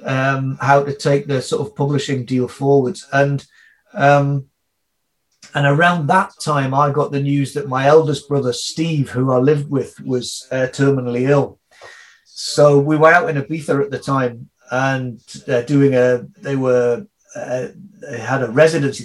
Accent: British